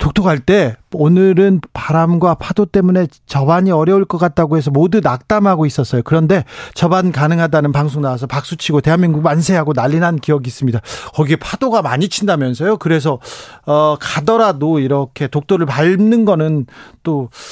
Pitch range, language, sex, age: 135-175 Hz, Korean, male, 40-59